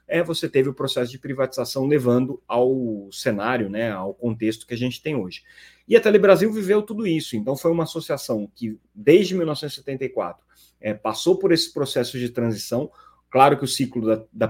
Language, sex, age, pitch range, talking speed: Portuguese, male, 30-49, 110-160 Hz, 180 wpm